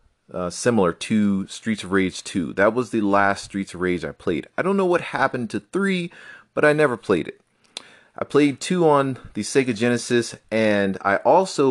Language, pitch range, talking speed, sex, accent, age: English, 90-115 Hz, 195 wpm, male, American, 30-49